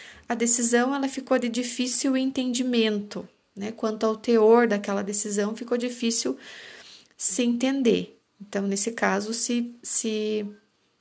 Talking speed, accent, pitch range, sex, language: 120 wpm, Brazilian, 210-245 Hz, female, Portuguese